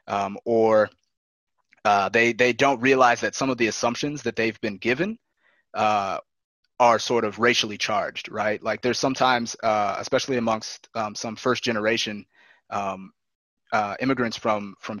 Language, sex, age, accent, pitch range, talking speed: English, male, 20-39, American, 105-125 Hz, 150 wpm